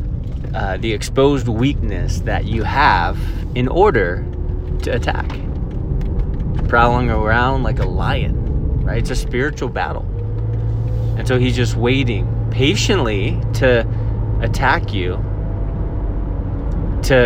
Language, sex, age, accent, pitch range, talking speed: English, male, 30-49, American, 95-125 Hz, 110 wpm